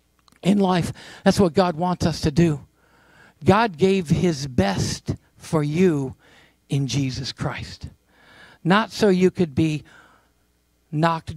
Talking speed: 125 wpm